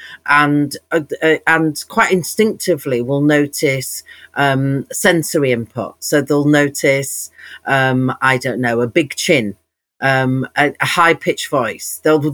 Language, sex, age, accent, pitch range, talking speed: English, female, 40-59, British, 140-180 Hz, 130 wpm